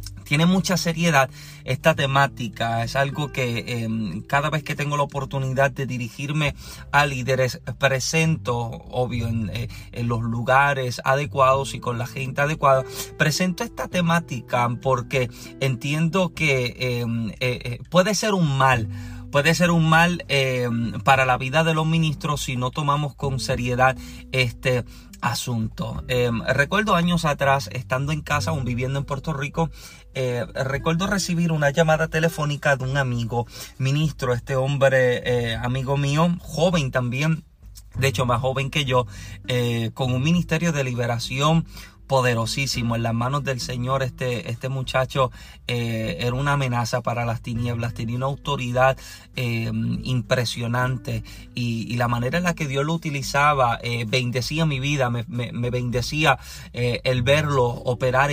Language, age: Spanish, 30-49